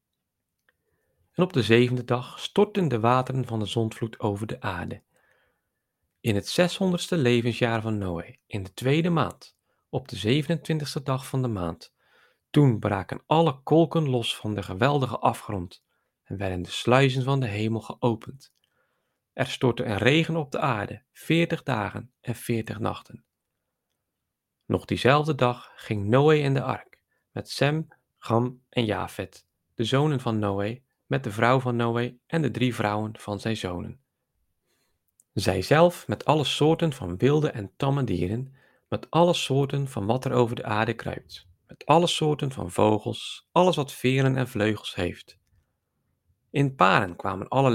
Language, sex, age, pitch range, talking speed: Dutch, male, 40-59, 105-140 Hz, 155 wpm